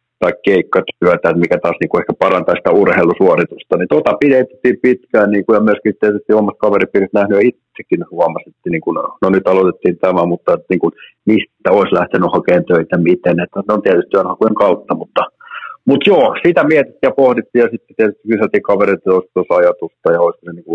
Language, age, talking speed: Finnish, 60-79, 180 wpm